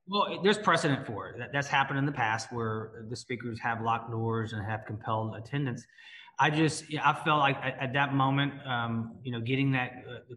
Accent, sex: American, male